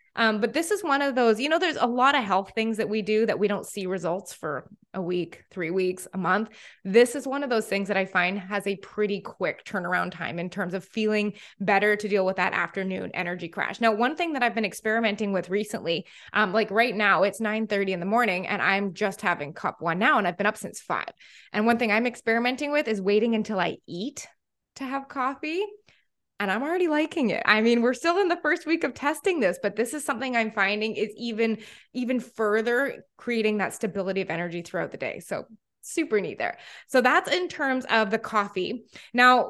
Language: English